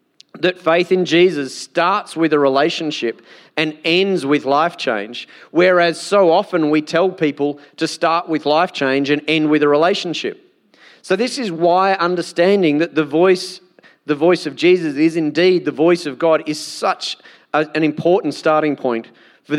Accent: Australian